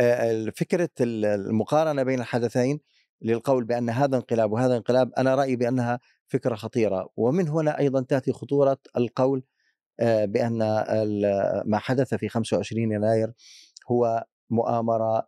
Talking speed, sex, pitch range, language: 115 wpm, male, 110-130 Hz, Arabic